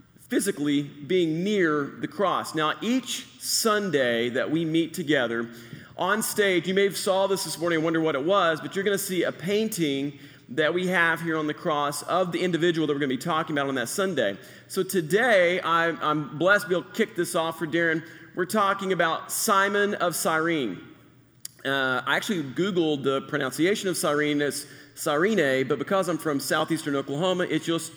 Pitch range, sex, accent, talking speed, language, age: 150-195 Hz, male, American, 195 wpm, English, 40-59